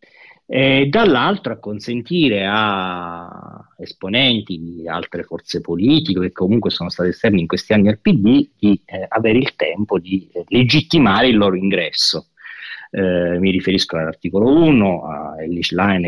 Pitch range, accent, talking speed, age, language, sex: 95-125 Hz, Italian, 140 wpm, 30-49, English, male